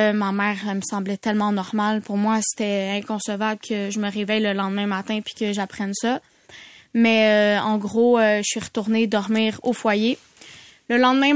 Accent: Canadian